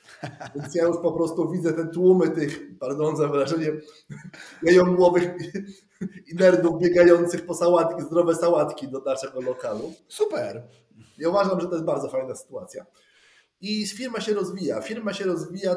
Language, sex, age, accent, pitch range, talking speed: Polish, male, 20-39, native, 155-185 Hz, 150 wpm